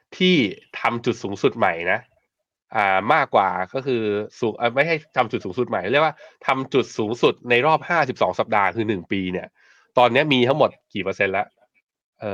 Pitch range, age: 105-140 Hz, 20-39